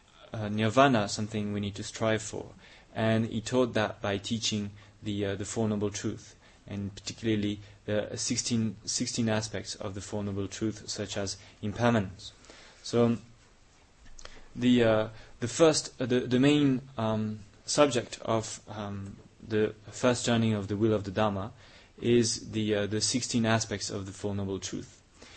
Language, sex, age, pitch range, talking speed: English, male, 20-39, 105-120 Hz, 160 wpm